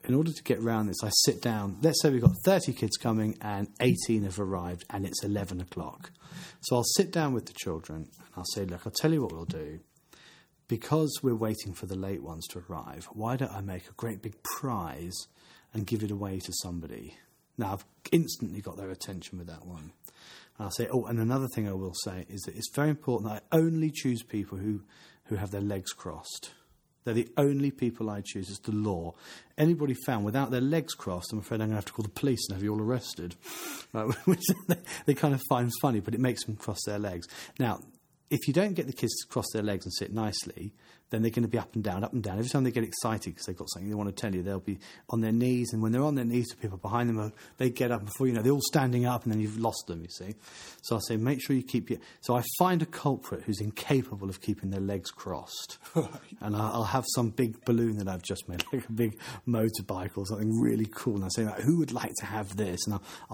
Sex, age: male, 30-49